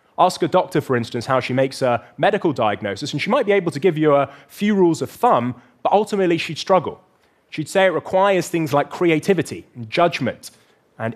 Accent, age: British, 30-49